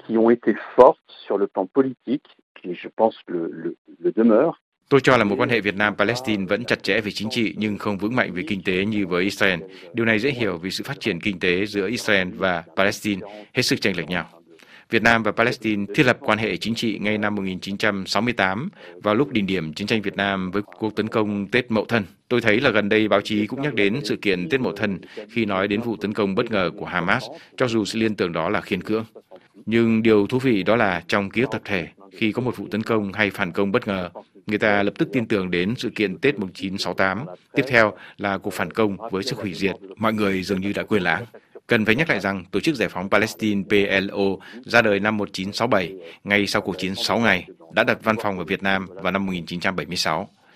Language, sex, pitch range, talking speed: Vietnamese, male, 95-115 Hz, 235 wpm